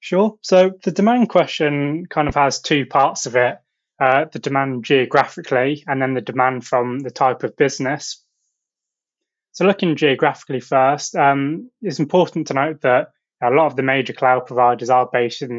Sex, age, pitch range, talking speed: male, 20-39, 130-150 Hz, 175 wpm